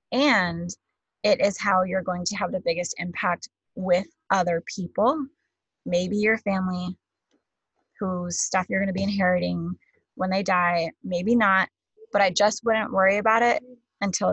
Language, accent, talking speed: English, American, 155 wpm